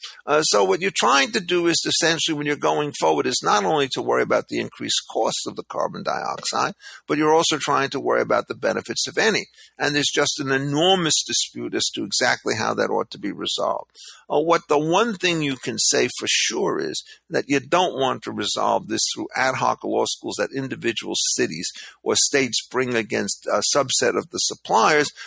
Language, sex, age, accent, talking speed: English, male, 50-69, American, 205 wpm